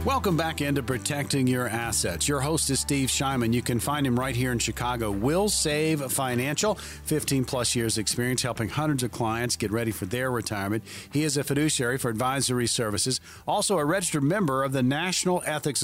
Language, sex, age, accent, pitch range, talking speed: English, male, 40-59, American, 120-145 Hz, 185 wpm